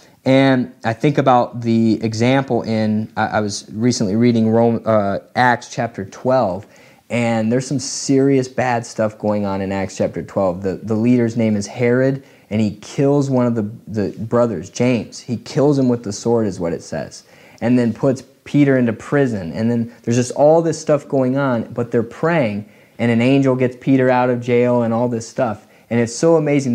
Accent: American